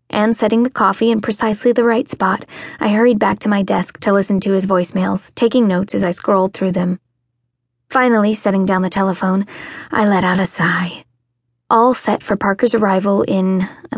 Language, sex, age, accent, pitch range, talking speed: English, female, 20-39, American, 170-215 Hz, 190 wpm